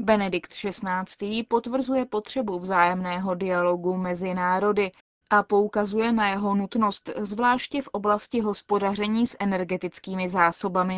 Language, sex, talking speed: Czech, female, 110 wpm